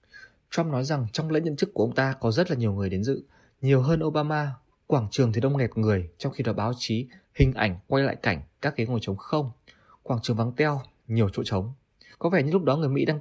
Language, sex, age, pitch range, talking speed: Vietnamese, male, 20-39, 115-155 Hz, 255 wpm